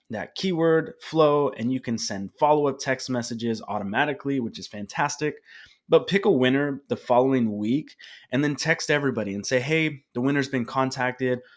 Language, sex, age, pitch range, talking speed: English, male, 20-39, 120-145 Hz, 170 wpm